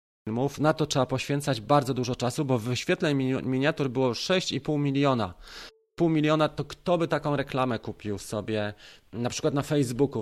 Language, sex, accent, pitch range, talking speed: Polish, male, native, 115-155 Hz, 160 wpm